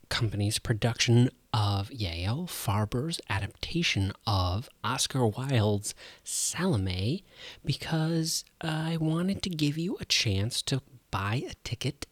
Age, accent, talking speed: 30-49, American, 110 wpm